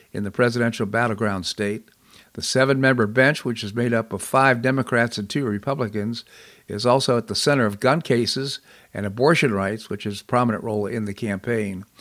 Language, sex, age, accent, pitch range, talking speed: English, male, 50-69, American, 105-135 Hz, 190 wpm